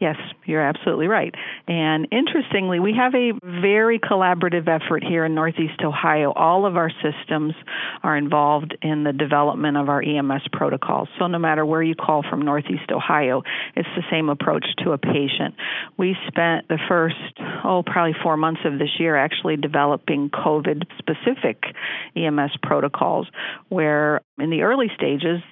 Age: 50-69